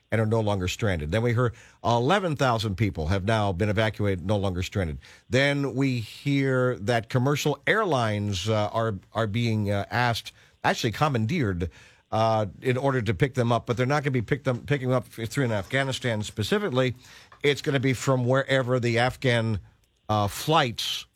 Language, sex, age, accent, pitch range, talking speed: English, male, 50-69, American, 105-135 Hz, 180 wpm